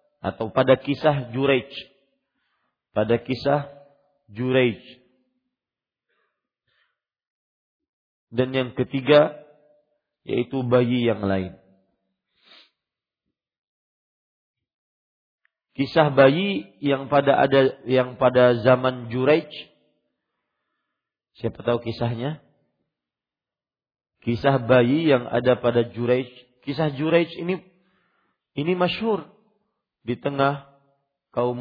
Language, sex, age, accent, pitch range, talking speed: English, male, 40-59, Indonesian, 120-145 Hz, 75 wpm